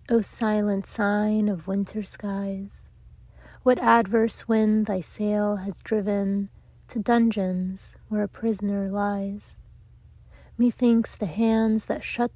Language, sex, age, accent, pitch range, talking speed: English, female, 30-49, American, 195-225 Hz, 115 wpm